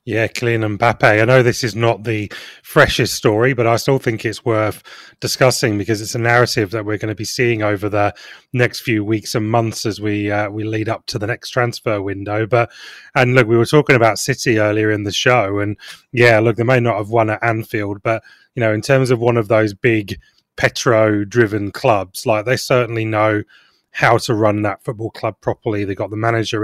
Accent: British